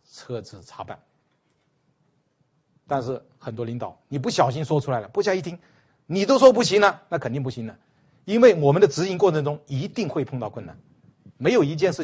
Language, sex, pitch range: Chinese, male, 125-155 Hz